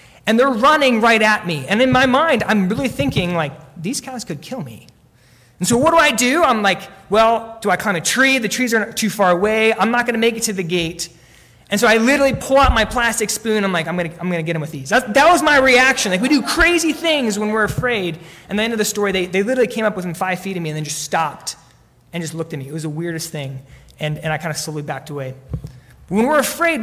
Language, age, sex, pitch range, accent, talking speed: English, 20-39, male, 150-215 Hz, American, 275 wpm